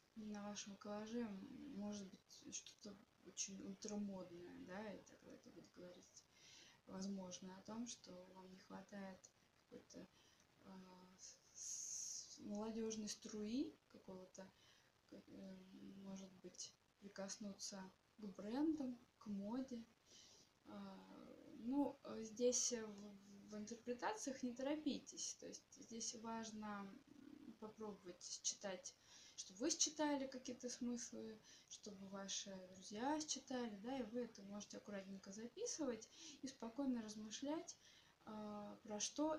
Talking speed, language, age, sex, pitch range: 105 wpm, Russian, 20-39, female, 195-245 Hz